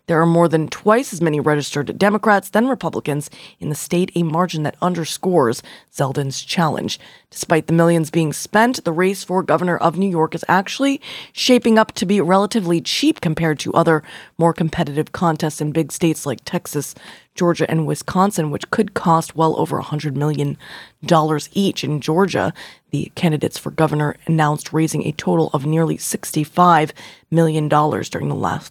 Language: English